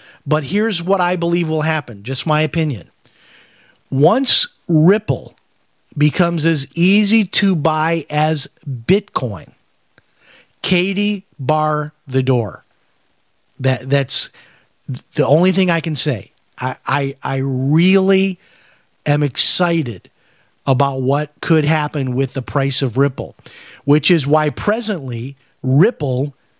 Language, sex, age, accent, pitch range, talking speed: English, male, 40-59, American, 140-170 Hz, 115 wpm